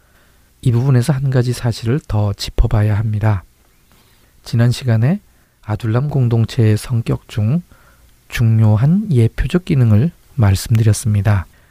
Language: Korean